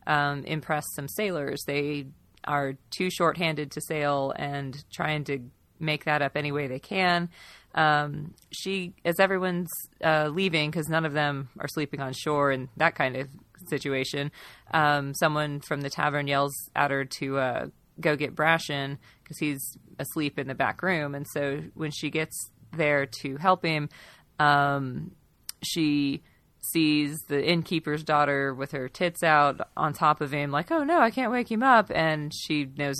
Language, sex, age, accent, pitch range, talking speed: English, female, 30-49, American, 140-160 Hz, 170 wpm